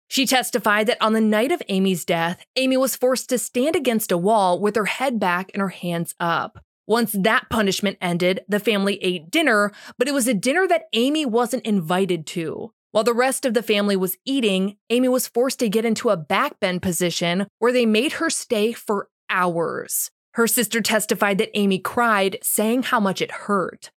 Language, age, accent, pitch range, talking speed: English, 20-39, American, 195-250 Hz, 195 wpm